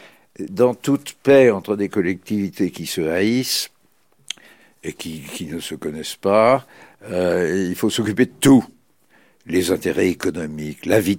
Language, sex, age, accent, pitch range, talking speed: French, male, 60-79, French, 90-115 Hz, 145 wpm